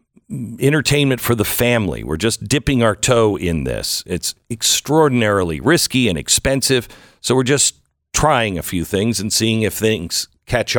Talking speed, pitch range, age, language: 155 wpm, 90-120 Hz, 50-69, English